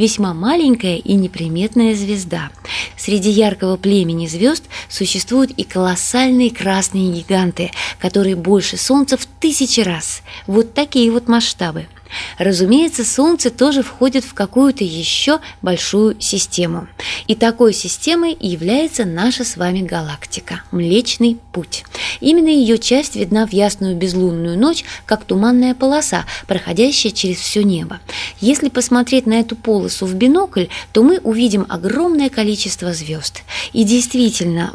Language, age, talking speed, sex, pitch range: Russian, 20-39, 125 wpm, female, 185-250 Hz